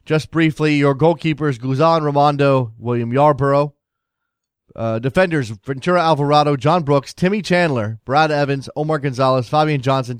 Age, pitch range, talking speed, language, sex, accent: 30-49, 130-155 Hz, 130 wpm, English, male, American